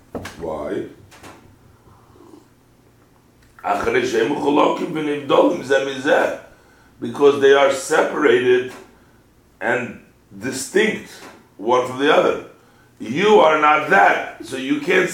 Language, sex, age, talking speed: English, male, 60-79, 70 wpm